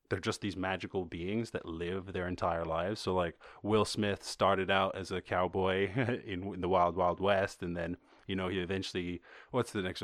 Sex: male